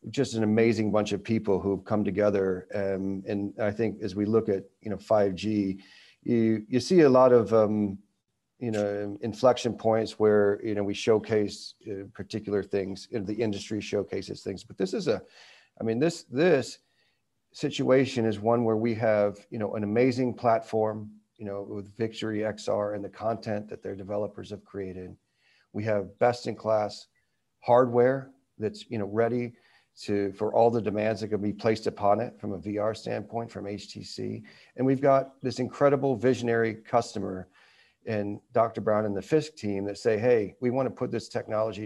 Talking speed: 180 wpm